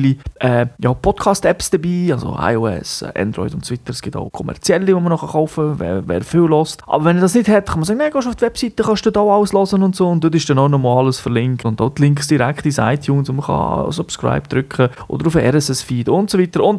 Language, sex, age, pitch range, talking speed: German, male, 30-49, 125-180 Hz, 245 wpm